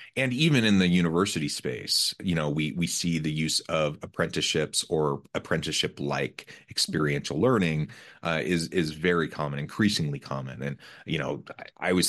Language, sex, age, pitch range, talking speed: English, male, 30-49, 75-85 Hz, 160 wpm